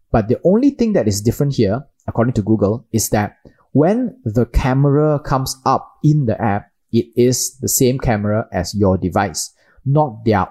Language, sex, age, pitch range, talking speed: English, male, 20-39, 100-135 Hz, 175 wpm